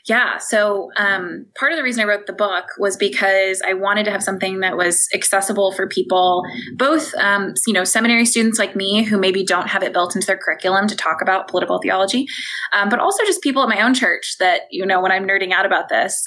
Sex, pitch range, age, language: female, 185-230 Hz, 20-39, English